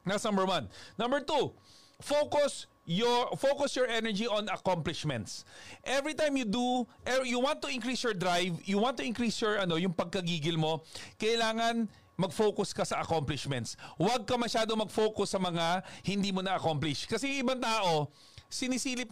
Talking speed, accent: 155 wpm, native